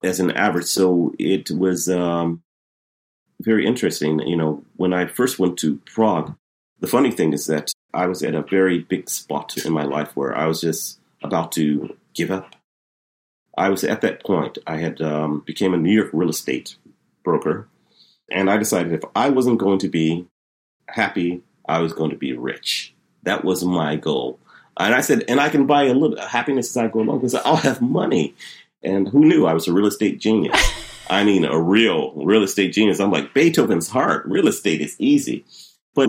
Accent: American